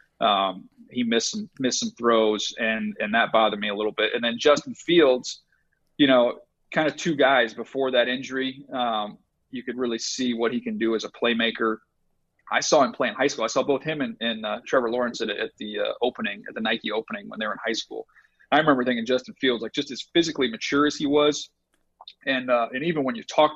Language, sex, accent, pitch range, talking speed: English, male, American, 115-140 Hz, 230 wpm